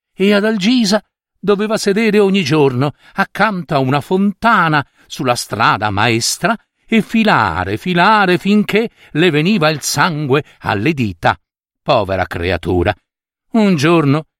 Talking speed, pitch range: 115 wpm, 140-215 Hz